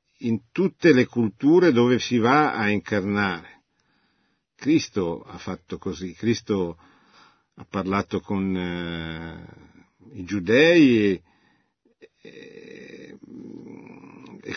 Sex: male